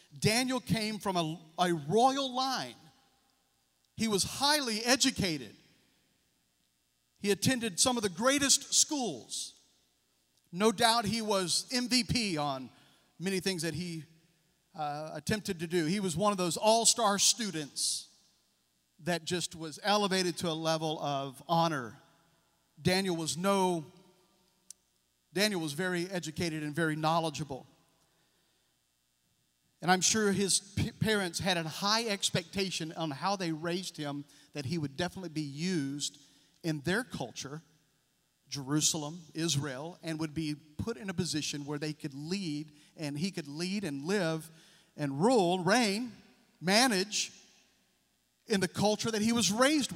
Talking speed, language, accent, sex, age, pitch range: 130 wpm, English, American, male, 40-59, 150-200 Hz